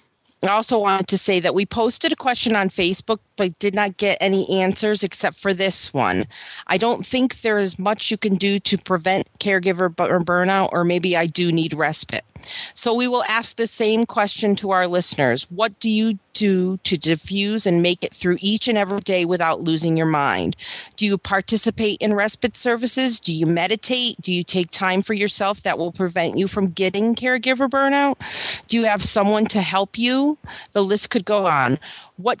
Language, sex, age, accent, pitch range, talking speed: English, female, 40-59, American, 175-220 Hz, 195 wpm